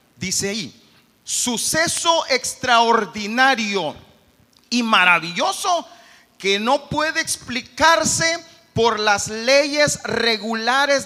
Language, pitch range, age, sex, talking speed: Spanish, 210-305 Hz, 40-59, male, 75 wpm